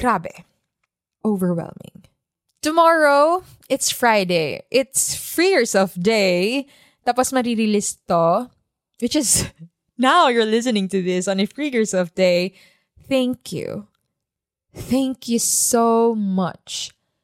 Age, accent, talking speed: 20-39, Filipino, 95 wpm